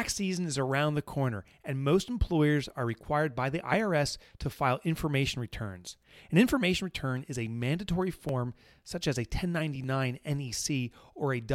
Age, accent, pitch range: 30-49, American, 130-185 Hz